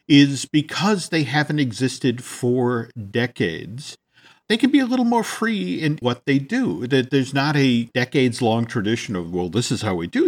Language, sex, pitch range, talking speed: English, male, 115-165 Hz, 175 wpm